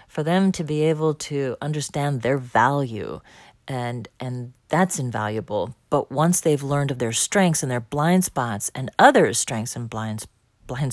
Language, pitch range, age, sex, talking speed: English, 125-175 Hz, 40-59, female, 165 wpm